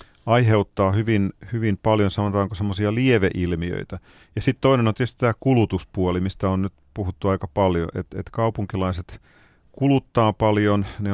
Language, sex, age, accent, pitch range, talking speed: Finnish, male, 40-59, native, 90-110 Hz, 140 wpm